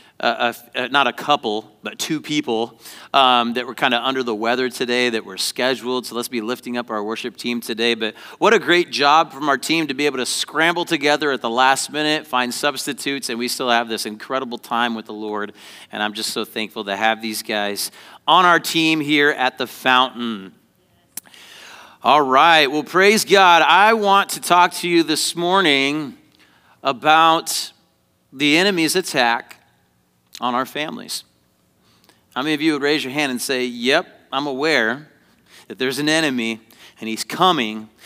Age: 40-59